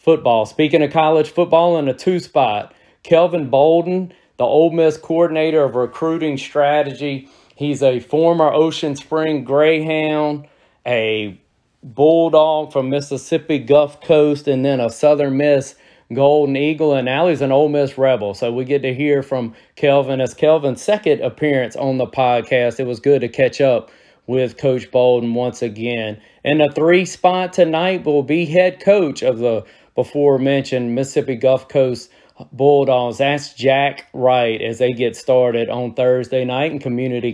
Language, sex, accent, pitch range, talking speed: English, male, American, 125-155 Hz, 155 wpm